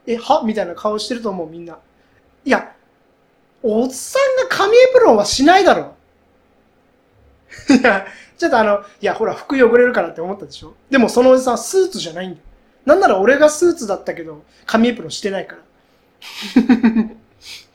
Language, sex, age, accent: Japanese, male, 20-39, native